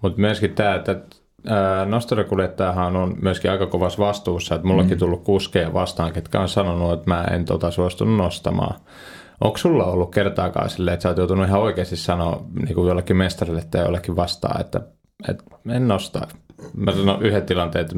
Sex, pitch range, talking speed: male, 85-100 Hz, 175 wpm